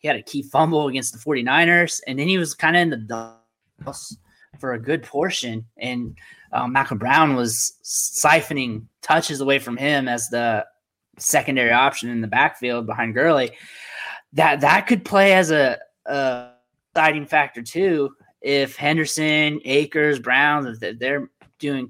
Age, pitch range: 20-39, 120-145 Hz